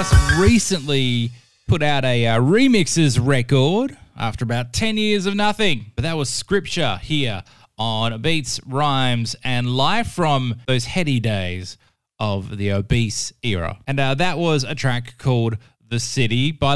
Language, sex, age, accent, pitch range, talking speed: English, male, 20-39, Australian, 110-150 Hz, 145 wpm